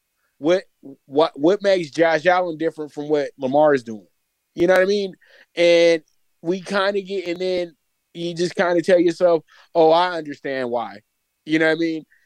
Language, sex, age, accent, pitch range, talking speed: English, male, 20-39, American, 145-170 Hz, 195 wpm